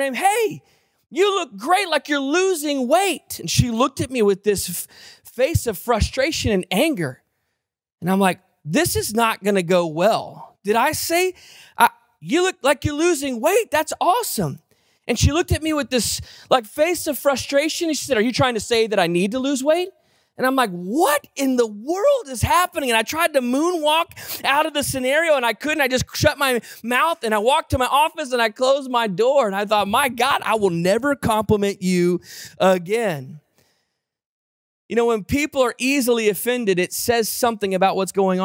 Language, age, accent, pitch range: English, 30-49, American, 160-270 Hz